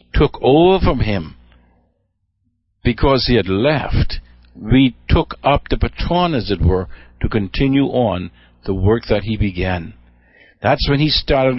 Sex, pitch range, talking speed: male, 95-145 Hz, 145 wpm